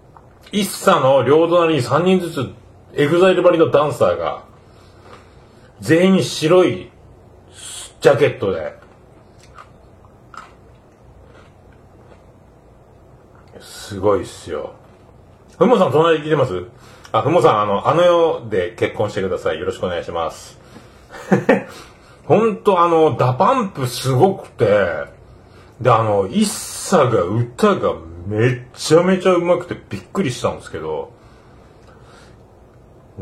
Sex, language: male, Japanese